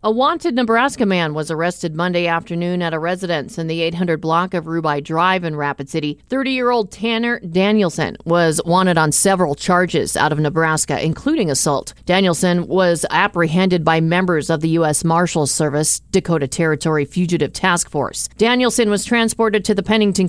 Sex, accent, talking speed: female, American, 165 wpm